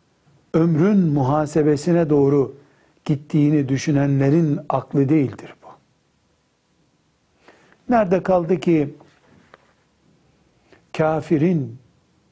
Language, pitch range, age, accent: Turkish, 125-165 Hz, 60-79, native